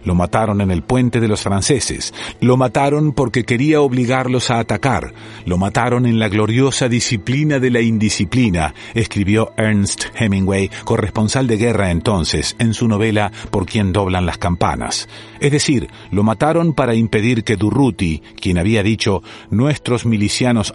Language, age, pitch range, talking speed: Spanish, 40-59, 100-125 Hz, 150 wpm